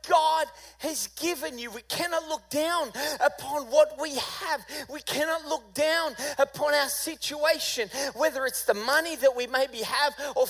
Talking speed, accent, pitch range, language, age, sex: 160 wpm, Australian, 235-305 Hz, English, 30-49, male